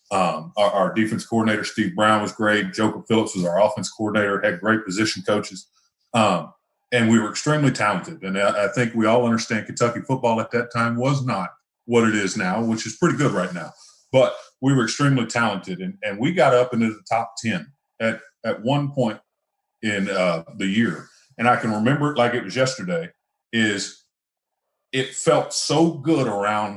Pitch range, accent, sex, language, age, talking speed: 105-125 Hz, American, male, English, 40-59, 195 wpm